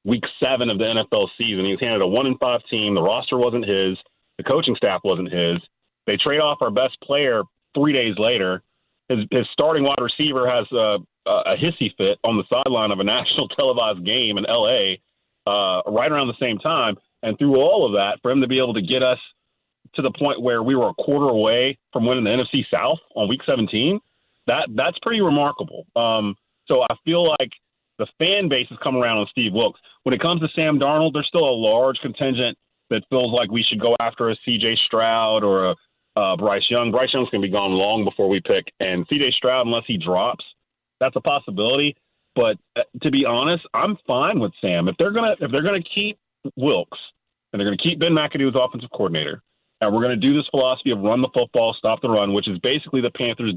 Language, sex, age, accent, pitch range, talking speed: English, male, 30-49, American, 110-145 Hz, 215 wpm